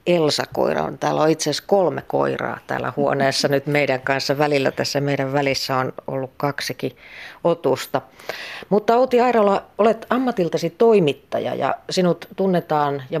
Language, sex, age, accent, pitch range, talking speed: Finnish, female, 40-59, native, 135-180 Hz, 140 wpm